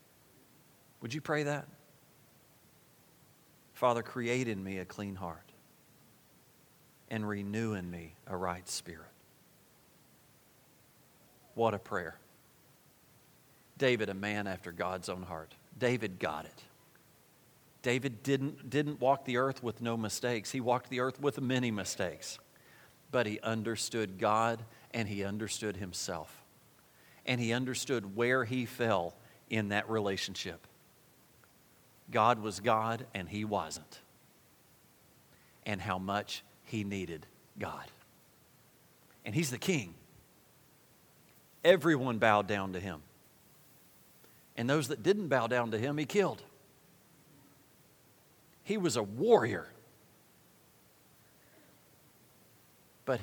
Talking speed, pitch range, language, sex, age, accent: 115 wpm, 100-130 Hz, English, male, 40-59, American